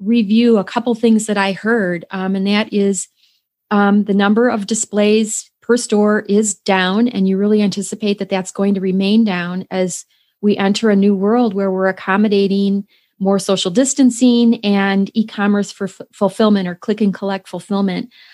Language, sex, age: English, female, 30-49